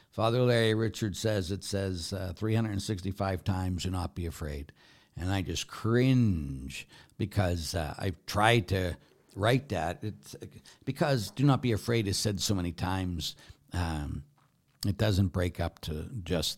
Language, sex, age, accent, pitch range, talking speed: English, male, 60-79, American, 85-115 Hz, 150 wpm